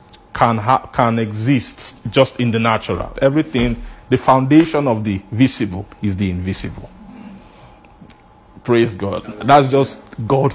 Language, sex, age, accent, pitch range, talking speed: English, male, 50-69, Nigerian, 110-145 Hz, 125 wpm